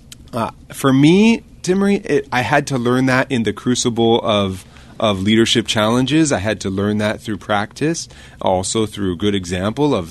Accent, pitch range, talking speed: American, 95-135 Hz, 180 wpm